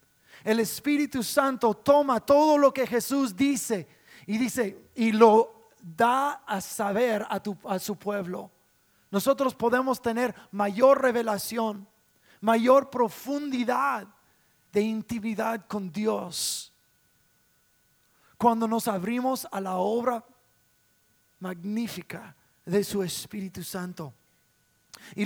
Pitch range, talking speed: 185-250 Hz, 100 wpm